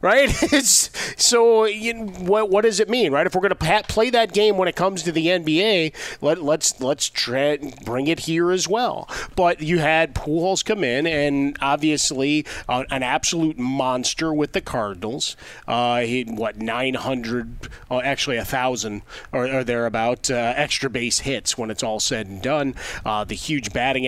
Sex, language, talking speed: male, English, 185 wpm